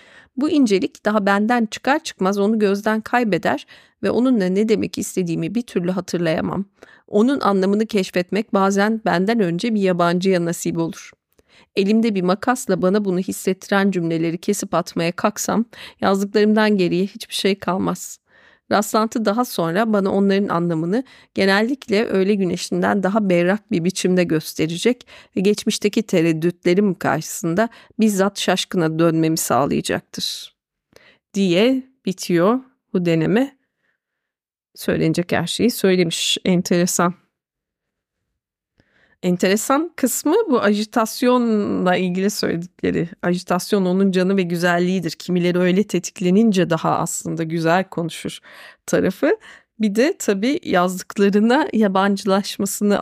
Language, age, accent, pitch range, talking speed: Turkish, 40-59, native, 180-220 Hz, 110 wpm